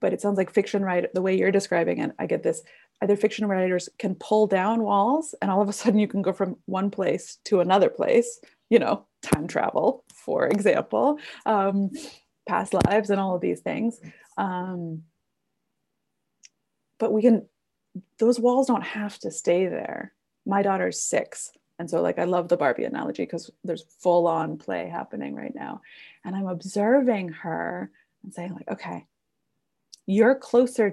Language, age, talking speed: English, 20-39, 175 wpm